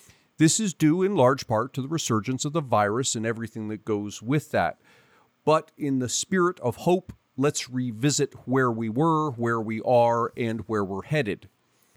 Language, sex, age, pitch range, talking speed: English, male, 40-59, 110-140 Hz, 180 wpm